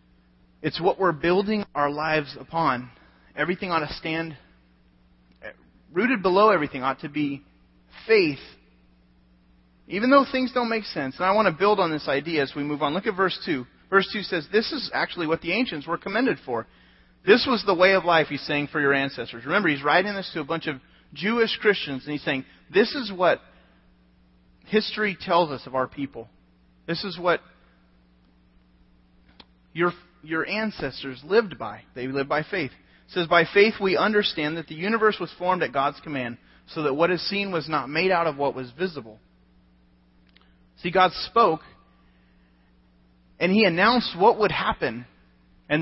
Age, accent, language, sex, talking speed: 30-49, American, English, male, 175 wpm